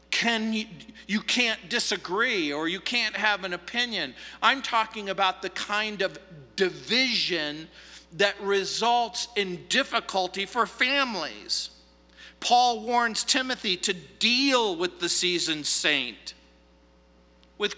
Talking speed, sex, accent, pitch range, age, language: 110 wpm, male, American, 145-230 Hz, 50-69, English